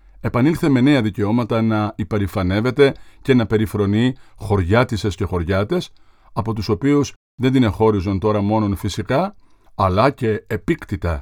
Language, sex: Greek, male